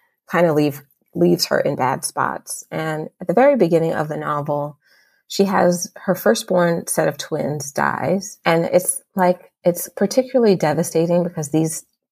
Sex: female